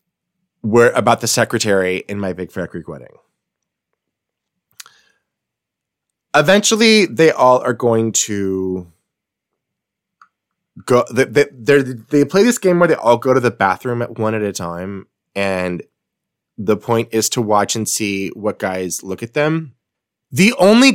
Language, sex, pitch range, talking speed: English, male, 105-145 Hz, 145 wpm